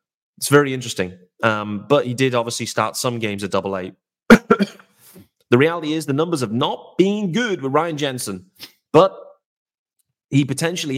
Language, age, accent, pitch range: English, 30-49, British, 115-160 Hz